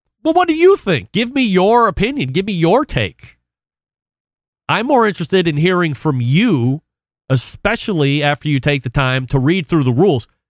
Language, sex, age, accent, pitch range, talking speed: English, male, 40-59, American, 115-155 Hz, 175 wpm